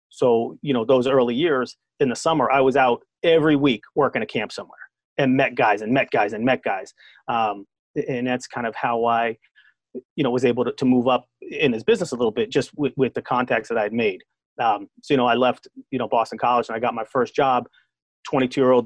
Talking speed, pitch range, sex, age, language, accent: 235 wpm, 130-155 Hz, male, 30-49, English, American